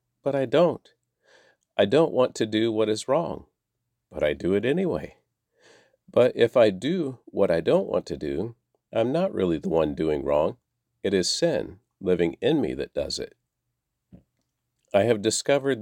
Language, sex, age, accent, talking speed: English, male, 50-69, American, 170 wpm